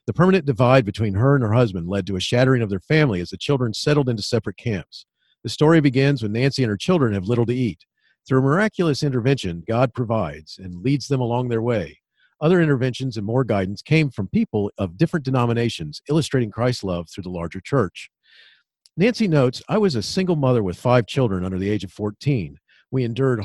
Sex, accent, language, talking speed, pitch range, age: male, American, English, 205 wpm, 105-140 Hz, 50-69